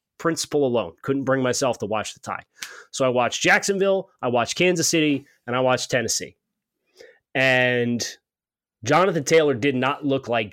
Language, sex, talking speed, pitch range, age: English, male, 160 wpm, 120-155 Hz, 30-49